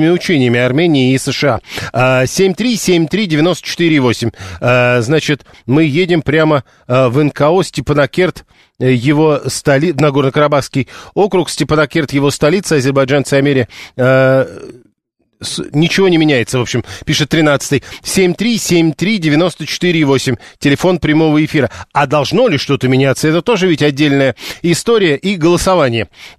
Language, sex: Russian, male